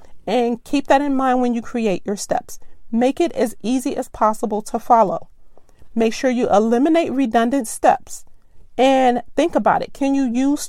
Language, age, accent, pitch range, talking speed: English, 40-59, American, 220-270 Hz, 175 wpm